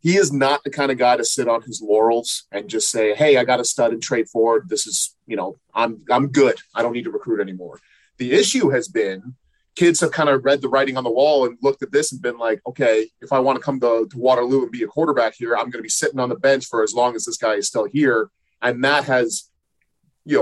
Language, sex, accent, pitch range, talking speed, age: English, male, American, 120-145 Hz, 270 wpm, 30-49